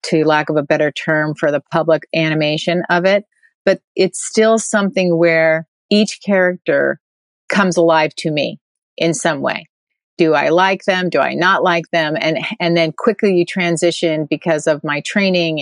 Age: 30-49